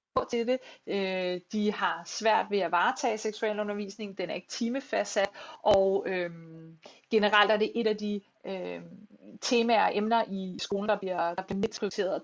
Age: 30-49